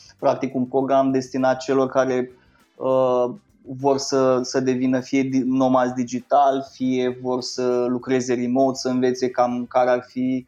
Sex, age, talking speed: male, 20-39, 145 wpm